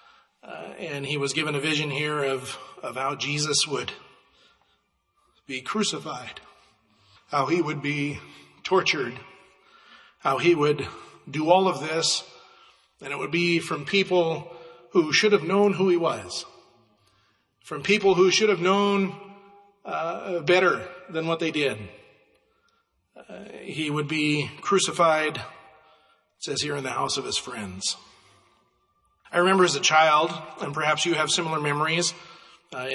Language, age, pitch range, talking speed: English, 40-59, 135-175 Hz, 140 wpm